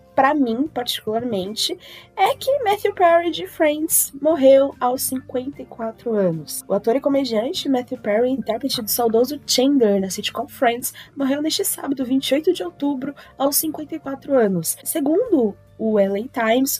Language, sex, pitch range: Portuguese, female, 240-320 Hz